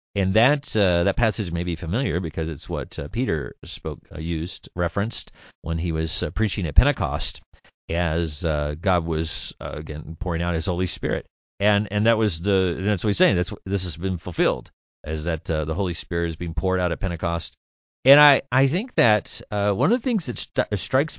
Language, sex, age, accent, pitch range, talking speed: English, male, 40-59, American, 80-110 Hz, 210 wpm